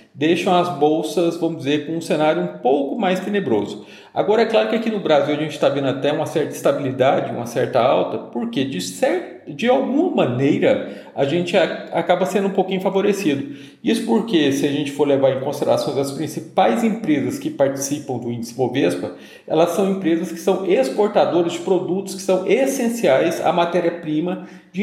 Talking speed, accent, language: 175 wpm, Brazilian, English